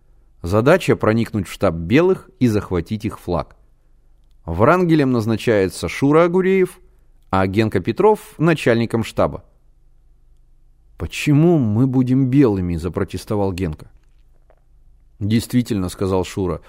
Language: Russian